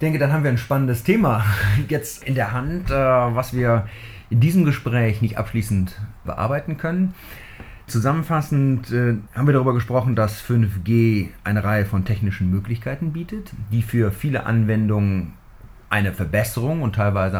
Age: 40-59